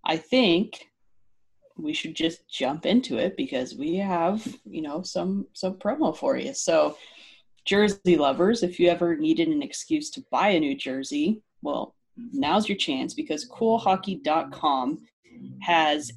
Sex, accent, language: female, American, English